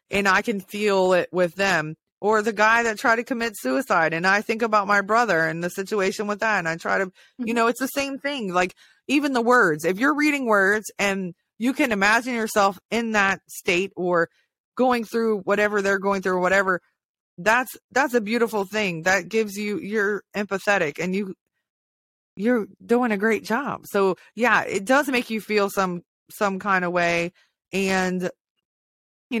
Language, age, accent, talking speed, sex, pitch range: English, 20-39, American, 190 wpm, female, 185-230 Hz